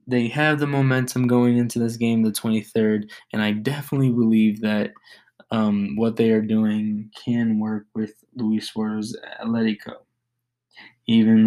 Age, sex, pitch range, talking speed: 20-39, male, 105-120 Hz, 140 wpm